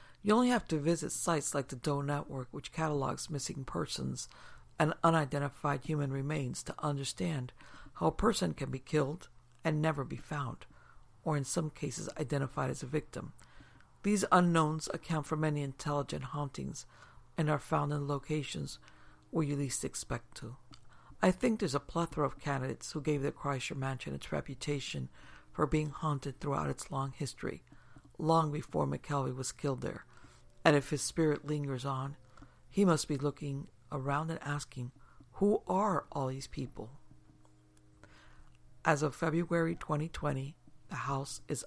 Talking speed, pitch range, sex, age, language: 155 wpm, 135-155 Hz, female, 60-79, English